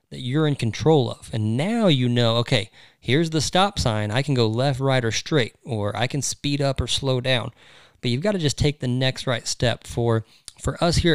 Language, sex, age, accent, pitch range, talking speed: English, male, 20-39, American, 115-140 Hz, 230 wpm